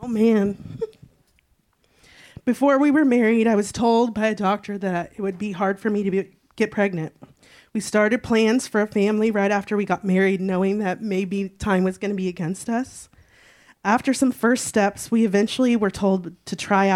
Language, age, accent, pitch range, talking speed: English, 30-49, American, 190-220 Hz, 190 wpm